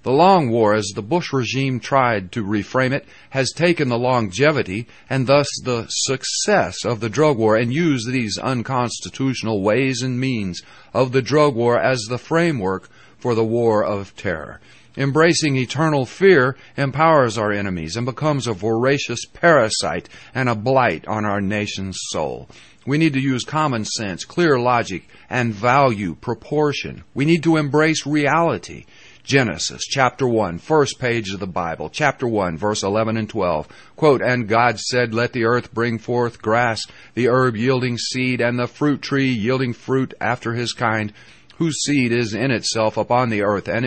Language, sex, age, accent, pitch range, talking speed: English, male, 50-69, American, 110-135 Hz, 165 wpm